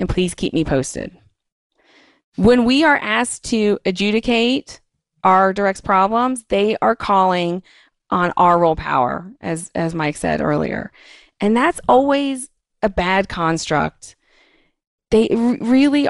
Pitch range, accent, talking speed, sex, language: 180-225 Hz, American, 125 wpm, female, English